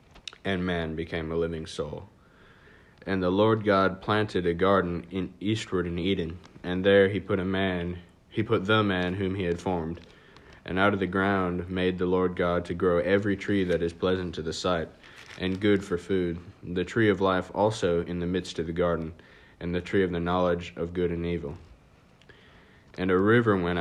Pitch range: 85-95 Hz